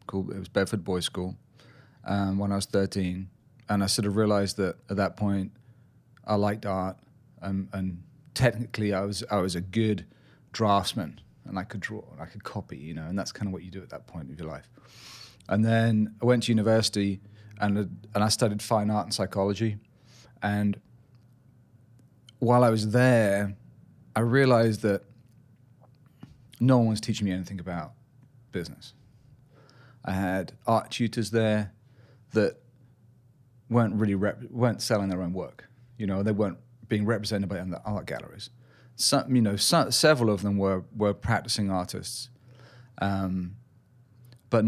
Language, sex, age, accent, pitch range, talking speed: English, male, 30-49, British, 100-120 Hz, 165 wpm